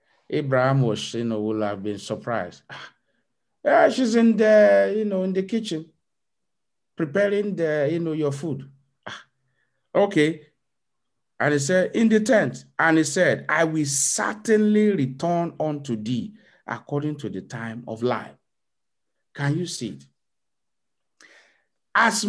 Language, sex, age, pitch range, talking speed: English, male, 50-69, 120-170 Hz, 135 wpm